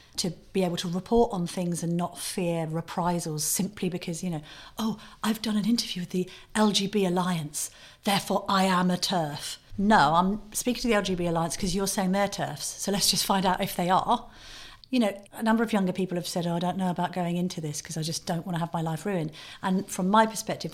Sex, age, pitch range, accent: female, 40-59, 165-195 Hz, British